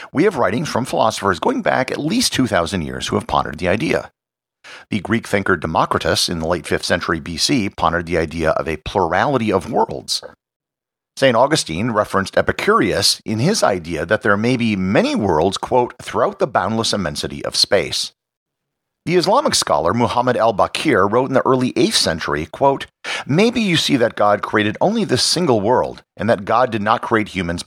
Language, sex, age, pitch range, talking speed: English, male, 50-69, 90-125 Hz, 180 wpm